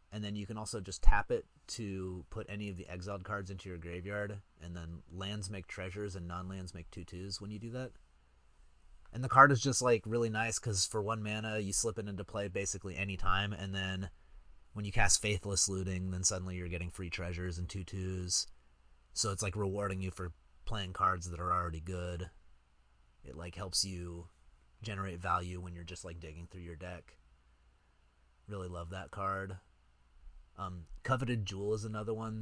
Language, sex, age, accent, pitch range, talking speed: English, male, 30-49, American, 85-105 Hz, 190 wpm